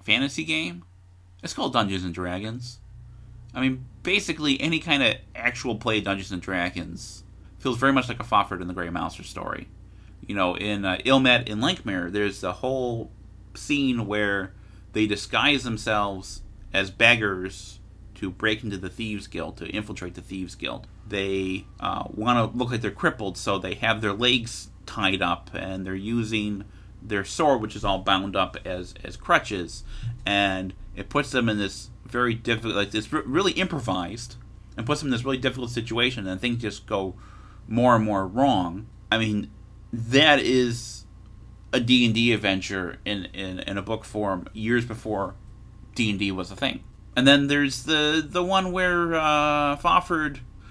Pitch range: 95-125 Hz